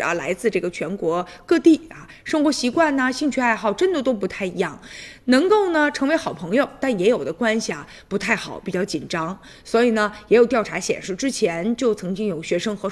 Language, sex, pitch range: Chinese, female, 205-275 Hz